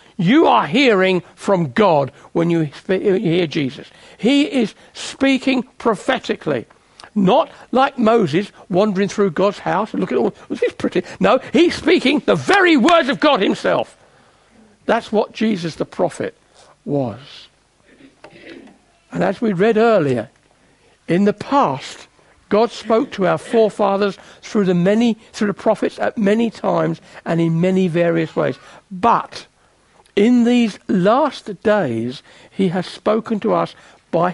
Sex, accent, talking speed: male, British, 140 wpm